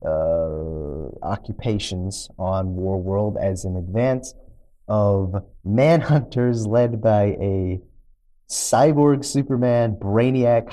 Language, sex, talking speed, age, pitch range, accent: English, male, 90 wpm, 30-49, 90-115 Hz, American